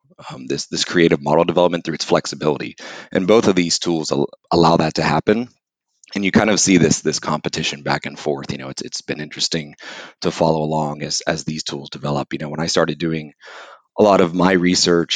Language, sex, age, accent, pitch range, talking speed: English, male, 30-49, American, 75-90 Hz, 220 wpm